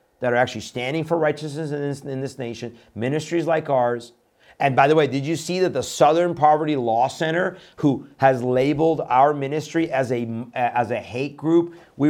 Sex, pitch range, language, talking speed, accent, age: male, 120-145 Hz, English, 185 wpm, American, 40-59